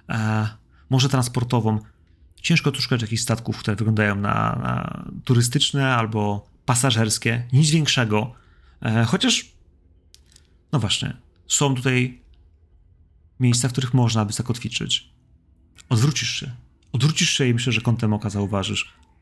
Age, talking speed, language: 30-49, 115 wpm, Polish